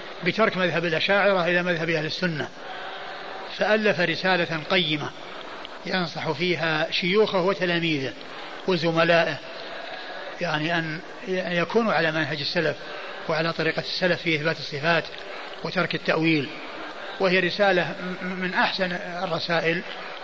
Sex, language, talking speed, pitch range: male, Arabic, 100 wpm, 165-195 Hz